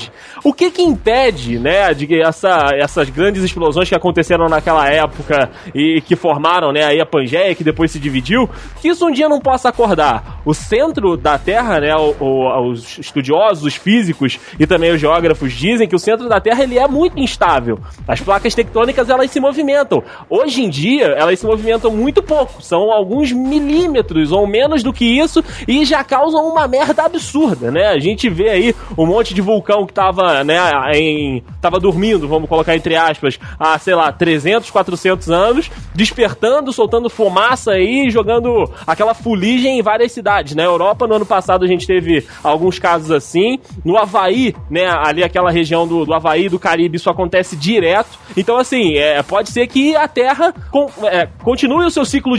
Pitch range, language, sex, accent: 165-245 Hz, Portuguese, male, Brazilian